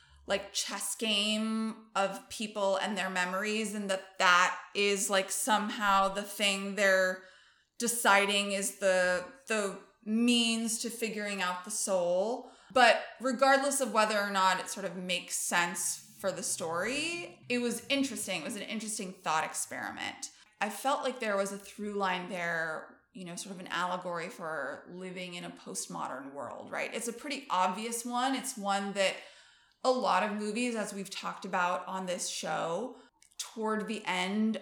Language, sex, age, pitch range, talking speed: English, female, 20-39, 185-230 Hz, 165 wpm